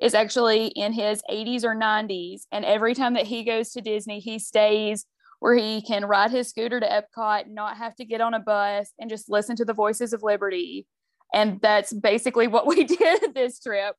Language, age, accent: English, 20-39, American